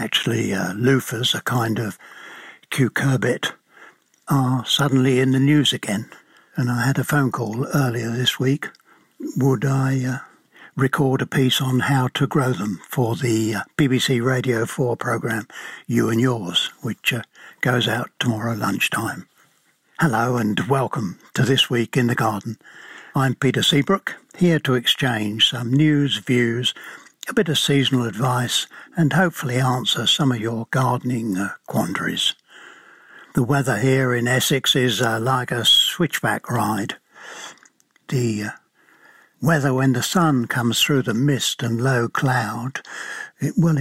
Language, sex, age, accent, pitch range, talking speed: English, male, 60-79, British, 120-140 Hz, 145 wpm